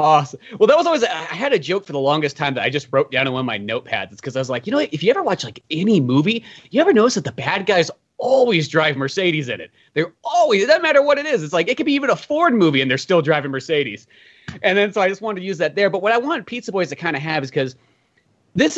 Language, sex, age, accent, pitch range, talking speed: English, male, 30-49, American, 140-210 Hz, 300 wpm